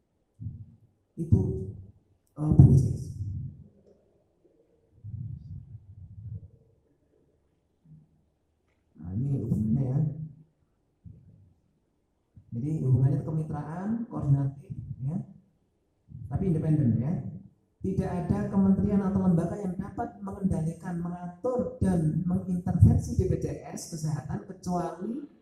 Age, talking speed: 50-69, 70 wpm